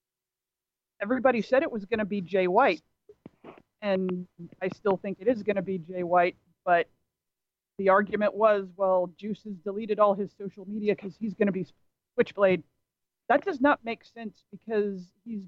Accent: American